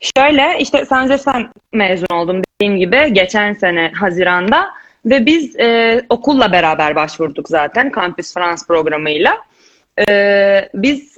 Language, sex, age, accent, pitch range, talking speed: Turkish, female, 20-39, native, 205-280 Hz, 125 wpm